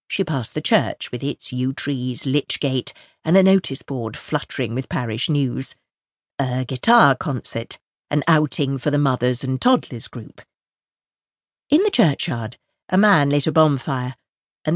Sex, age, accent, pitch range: female, 50-69, British, 130-155 Hz